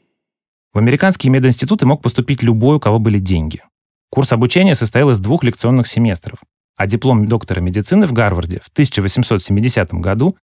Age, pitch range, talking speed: 30-49, 95-130 Hz, 150 wpm